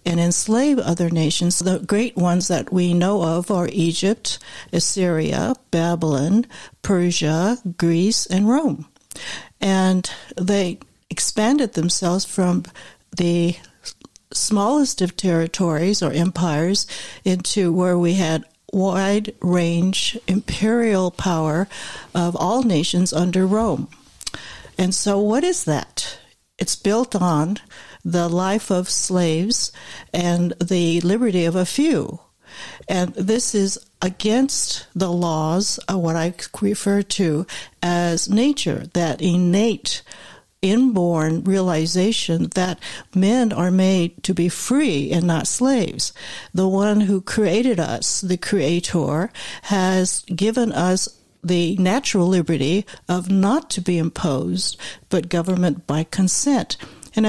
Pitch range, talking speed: 175-205 Hz, 115 wpm